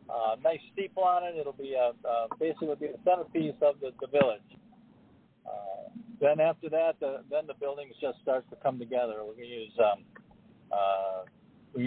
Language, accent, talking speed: English, American, 175 wpm